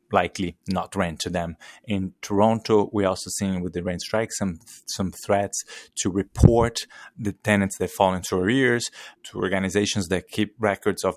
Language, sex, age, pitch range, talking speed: English, male, 20-39, 90-105 Hz, 165 wpm